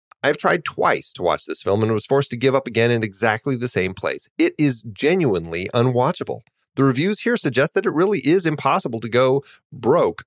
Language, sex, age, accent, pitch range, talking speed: English, male, 30-49, American, 105-155 Hz, 205 wpm